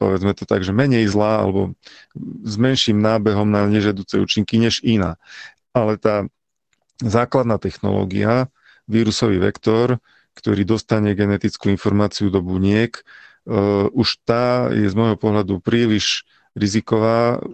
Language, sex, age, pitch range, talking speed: Slovak, male, 40-59, 100-115 Hz, 120 wpm